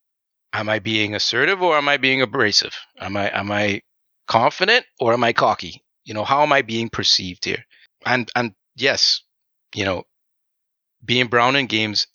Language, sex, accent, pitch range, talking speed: English, male, American, 100-120 Hz, 175 wpm